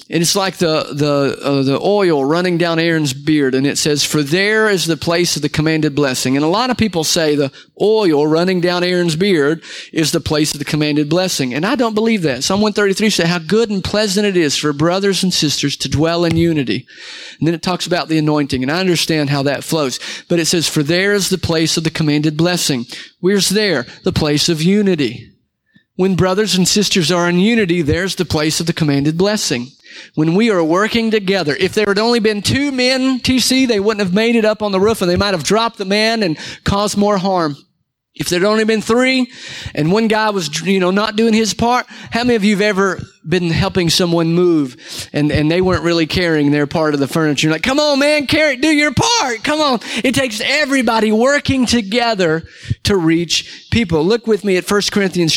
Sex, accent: male, American